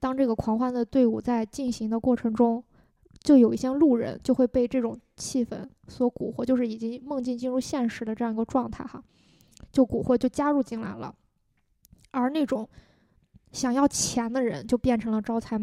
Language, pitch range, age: Chinese, 225-260 Hz, 20-39